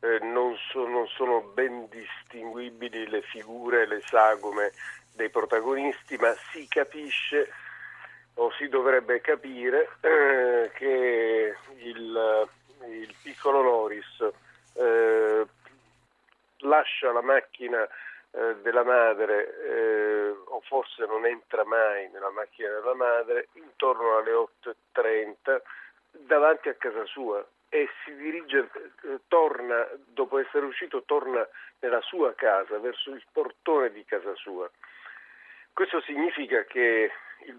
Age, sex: 40-59, male